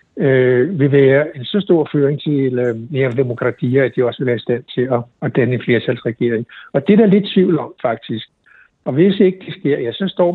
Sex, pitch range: male, 125-155 Hz